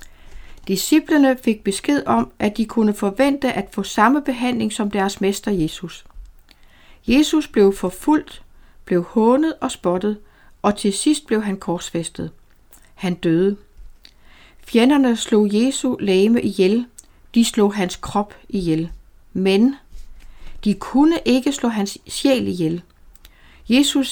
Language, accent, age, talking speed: Danish, native, 60-79, 125 wpm